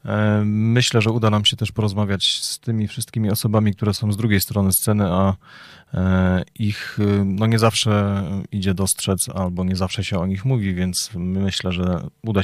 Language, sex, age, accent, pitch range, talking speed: Polish, male, 30-49, native, 90-105 Hz, 170 wpm